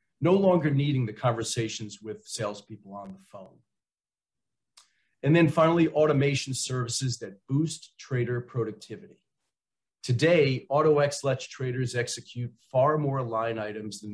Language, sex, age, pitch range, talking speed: English, male, 40-59, 110-140 Hz, 125 wpm